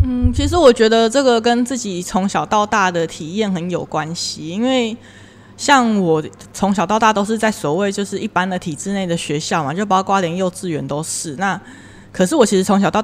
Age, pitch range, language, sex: 20-39, 175-235 Hz, Chinese, female